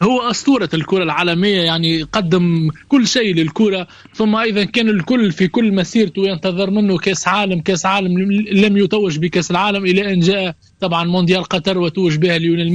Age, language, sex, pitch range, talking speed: 20-39, Arabic, male, 180-215 Hz, 165 wpm